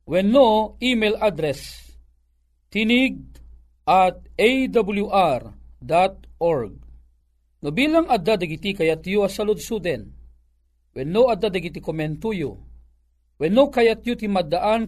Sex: male